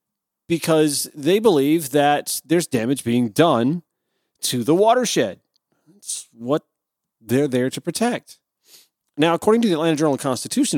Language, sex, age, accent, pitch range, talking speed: English, male, 40-59, American, 115-155 Hz, 130 wpm